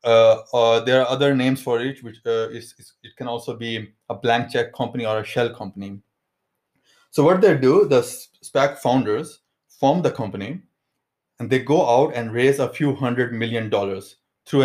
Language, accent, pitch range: English, Indian, 110-135 Hz